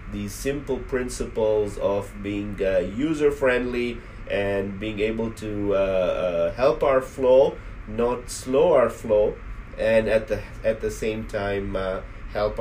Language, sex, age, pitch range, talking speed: English, male, 30-49, 100-125 Hz, 145 wpm